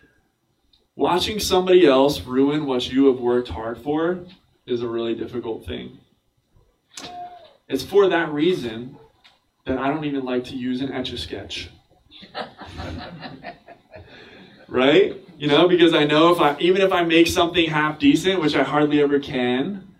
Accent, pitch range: American, 125-160 Hz